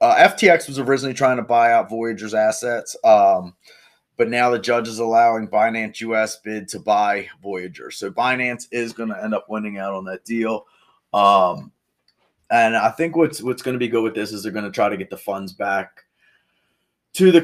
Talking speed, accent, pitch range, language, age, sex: 195 wpm, American, 100-125 Hz, English, 30-49, male